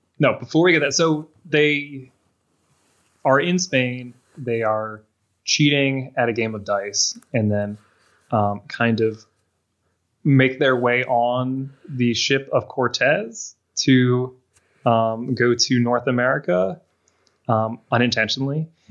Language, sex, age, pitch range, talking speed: English, male, 20-39, 105-130 Hz, 125 wpm